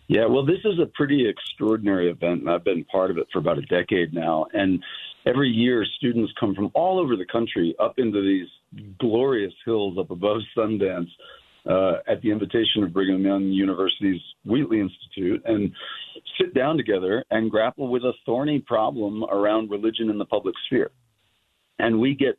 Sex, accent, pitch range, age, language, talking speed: male, American, 105-135 Hz, 50-69, English, 175 wpm